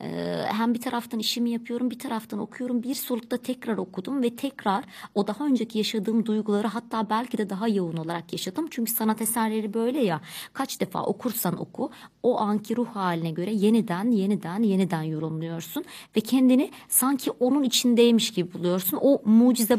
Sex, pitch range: male, 185-225 Hz